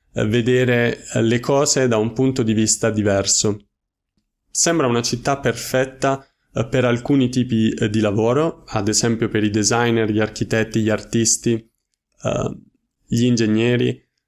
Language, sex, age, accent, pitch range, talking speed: Italian, male, 20-39, native, 110-130 Hz, 120 wpm